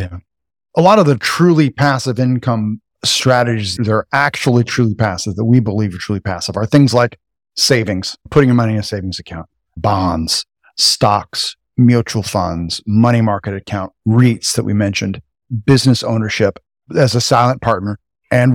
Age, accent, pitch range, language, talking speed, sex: 40-59, American, 105-130 Hz, English, 155 wpm, male